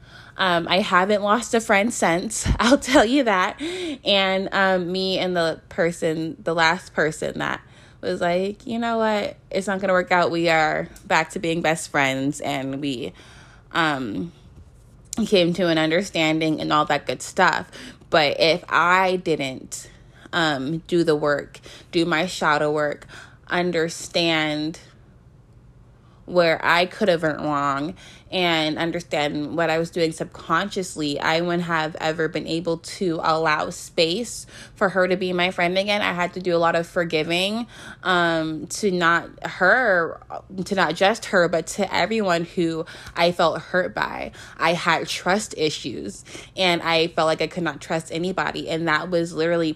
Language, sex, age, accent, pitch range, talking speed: English, female, 20-39, American, 155-180 Hz, 160 wpm